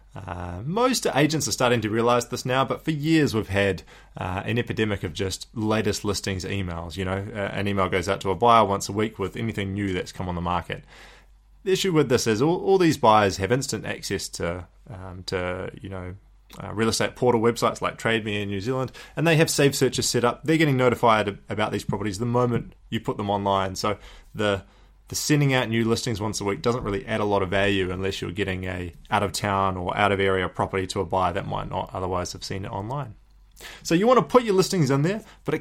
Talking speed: 235 wpm